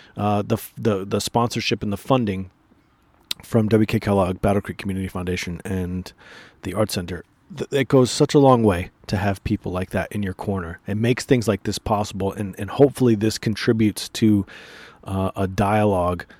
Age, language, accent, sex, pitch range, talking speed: 30-49, English, American, male, 95-110 Hz, 180 wpm